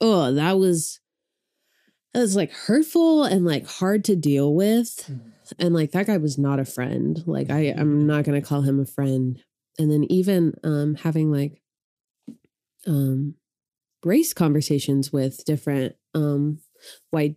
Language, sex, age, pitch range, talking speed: English, female, 20-39, 150-210 Hz, 145 wpm